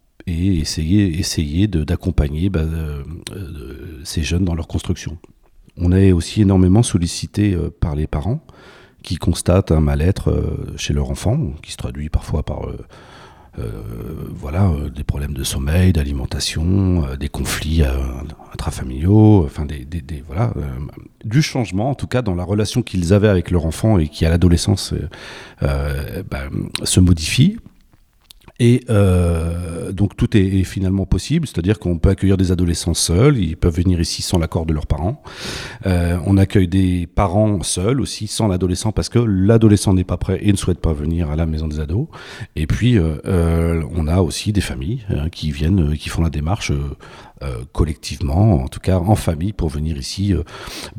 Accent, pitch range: French, 80-105 Hz